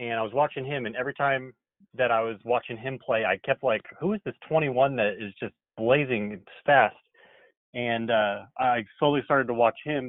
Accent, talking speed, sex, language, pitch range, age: American, 200 wpm, male, English, 105-125 Hz, 30-49